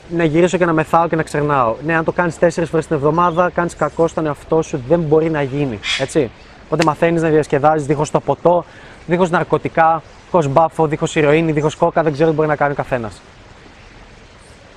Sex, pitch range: male, 150-200 Hz